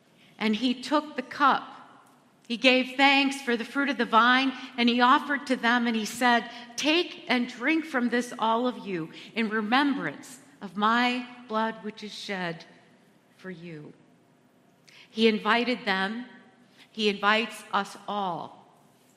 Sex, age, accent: female, 50-69, American